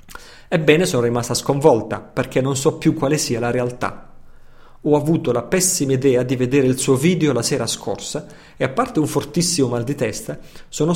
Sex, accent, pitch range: male, native, 120-145 Hz